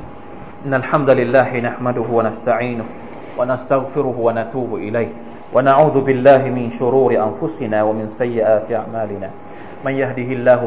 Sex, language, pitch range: male, Thai, 120-160 Hz